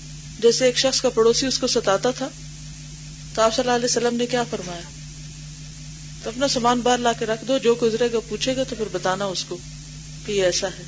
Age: 40-59